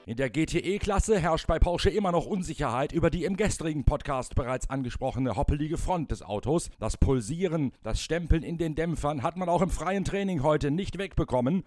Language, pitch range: German, 115-160 Hz